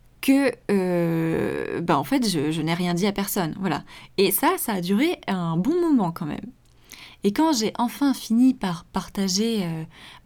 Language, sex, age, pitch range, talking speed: French, female, 20-39, 180-235 Hz, 180 wpm